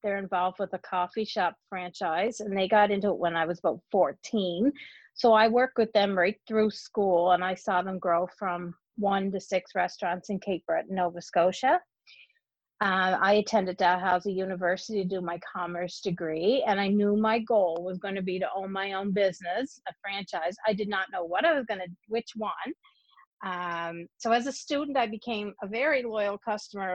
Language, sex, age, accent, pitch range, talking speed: English, female, 40-59, American, 185-220 Hz, 190 wpm